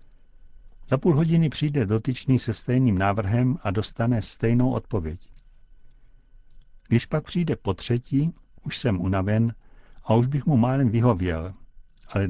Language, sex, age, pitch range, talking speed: Czech, male, 60-79, 105-130 Hz, 130 wpm